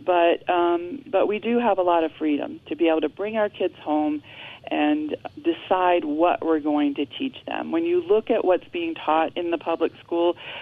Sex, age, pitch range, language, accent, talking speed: female, 40-59, 160-255 Hz, English, American, 210 wpm